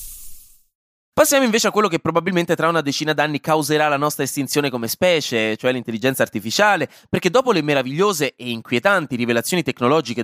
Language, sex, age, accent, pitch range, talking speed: Italian, male, 20-39, native, 125-180 Hz, 160 wpm